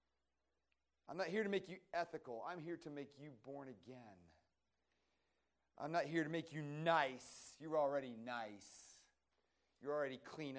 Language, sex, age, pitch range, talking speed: English, male, 40-59, 130-185 Hz, 155 wpm